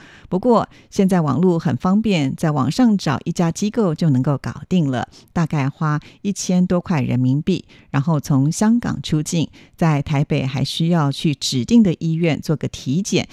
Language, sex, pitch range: Chinese, female, 145-200 Hz